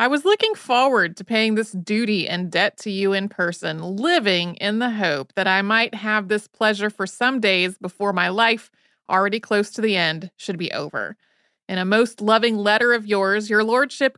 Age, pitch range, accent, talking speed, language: 30-49, 190-240 Hz, American, 200 wpm, English